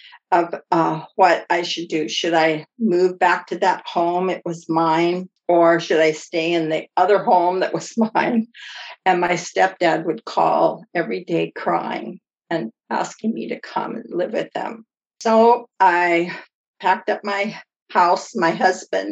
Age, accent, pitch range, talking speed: 50-69, American, 165-195 Hz, 165 wpm